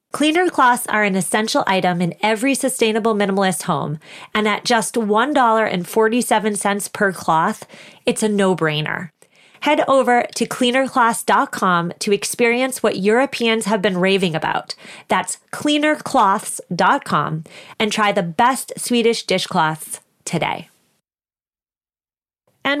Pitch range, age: 180-230 Hz, 30-49